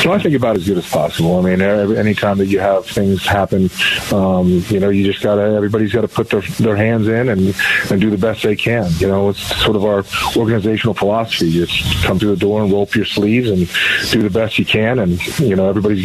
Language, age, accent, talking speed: English, 30-49, American, 250 wpm